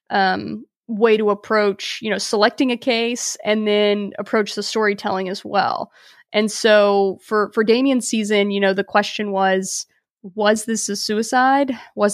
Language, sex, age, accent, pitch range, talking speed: English, female, 20-39, American, 205-230 Hz, 160 wpm